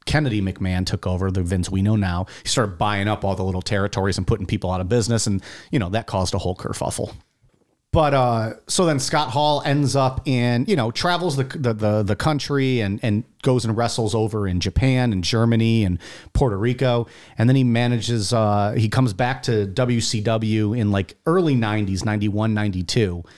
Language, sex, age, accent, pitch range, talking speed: English, male, 40-59, American, 100-125 Hz, 200 wpm